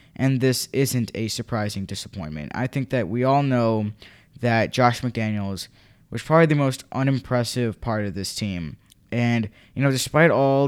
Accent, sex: American, male